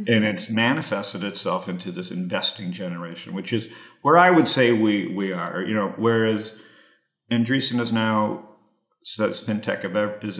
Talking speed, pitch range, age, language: 150 wpm, 105-125 Hz, 50-69, English